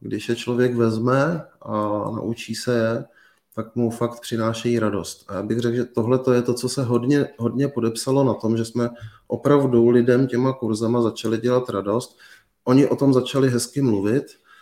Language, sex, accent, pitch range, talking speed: Czech, male, native, 110-120 Hz, 170 wpm